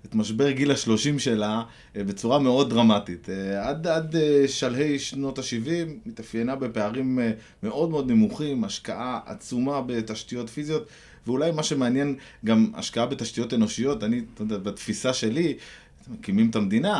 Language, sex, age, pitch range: Hebrew, male, 20-39, 110-150 Hz